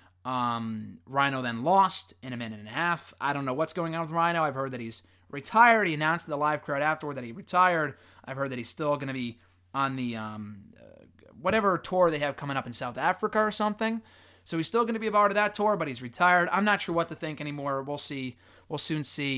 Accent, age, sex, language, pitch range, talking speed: American, 20-39, male, English, 125-175 Hz, 250 wpm